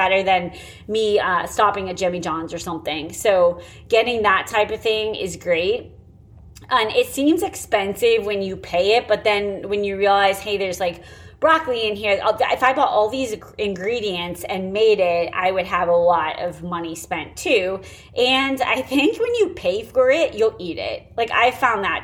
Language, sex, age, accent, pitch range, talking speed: English, female, 30-49, American, 185-240 Hz, 190 wpm